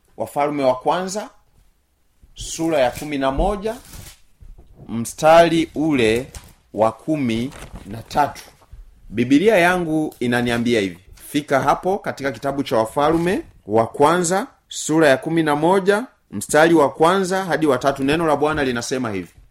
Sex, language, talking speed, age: male, Swahili, 130 wpm, 30-49